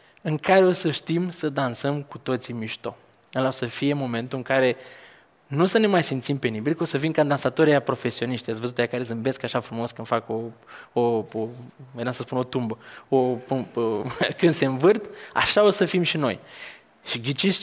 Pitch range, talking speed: 130-165 Hz, 195 wpm